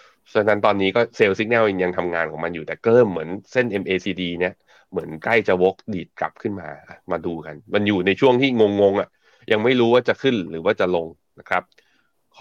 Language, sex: Thai, male